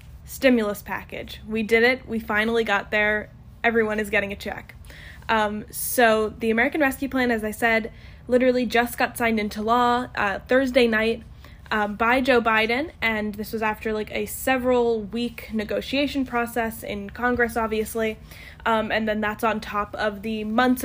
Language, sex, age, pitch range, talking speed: English, female, 10-29, 210-240 Hz, 165 wpm